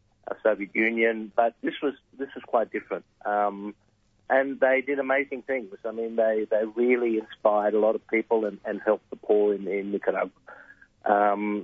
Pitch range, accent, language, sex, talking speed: 105-125 Hz, Australian, English, male, 190 wpm